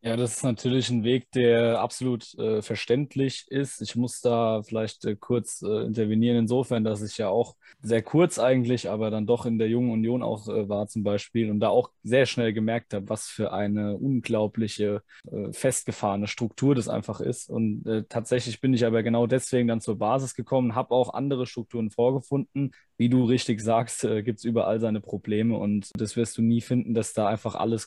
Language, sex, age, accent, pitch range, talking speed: German, male, 20-39, German, 110-125 Hz, 200 wpm